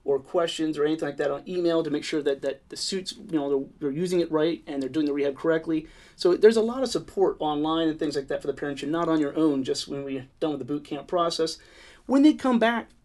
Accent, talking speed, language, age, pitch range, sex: American, 275 wpm, English, 30-49, 150-185 Hz, male